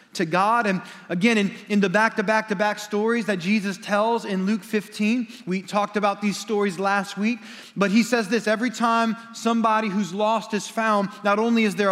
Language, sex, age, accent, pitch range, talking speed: English, male, 30-49, American, 200-230 Hz, 195 wpm